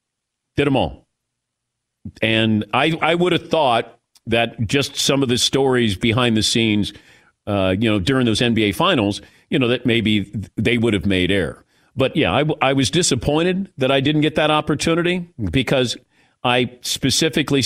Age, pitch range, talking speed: 50-69, 100-130 Hz, 165 wpm